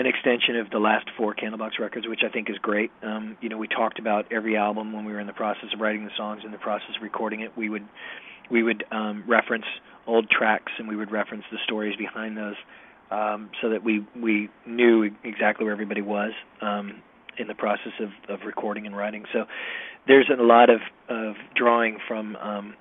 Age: 40-59